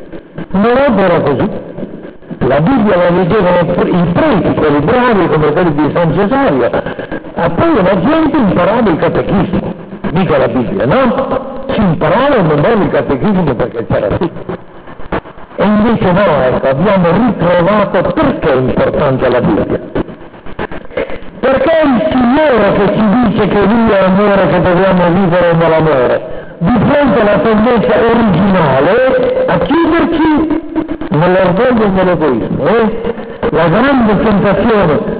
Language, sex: Italian, male